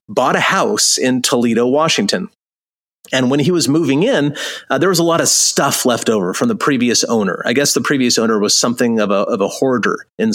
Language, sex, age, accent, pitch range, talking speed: English, male, 30-49, American, 130-170 Hz, 215 wpm